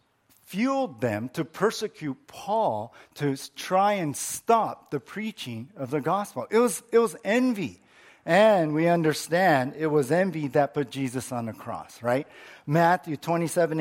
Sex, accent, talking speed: male, American, 150 wpm